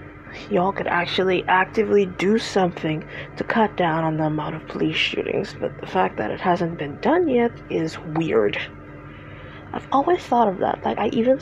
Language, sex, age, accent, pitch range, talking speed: English, female, 20-39, American, 175-280 Hz, 180 wpm